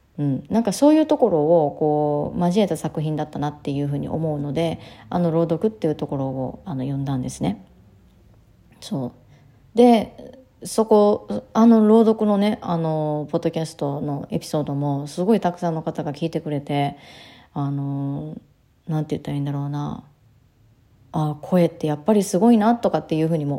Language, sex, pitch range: Japanese, female, 145-195 Hz